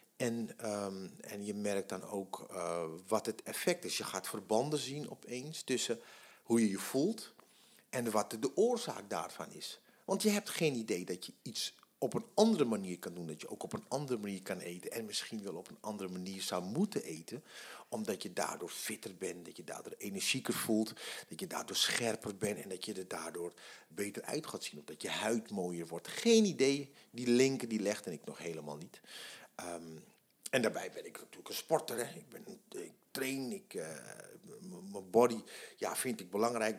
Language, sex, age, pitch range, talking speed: Dutch, male, 50-69, 100-145 Hz, 200 wpm